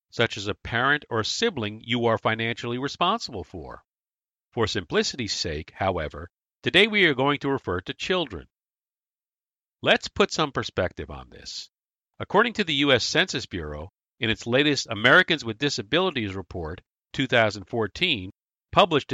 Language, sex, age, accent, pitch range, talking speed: English, male, 50-69, American, 100-145 Hz, 140 wpm